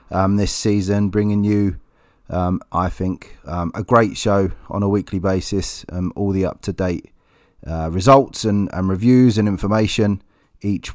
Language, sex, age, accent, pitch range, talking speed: English, male, 30-49, British, 90-115 Hz, 150 wpm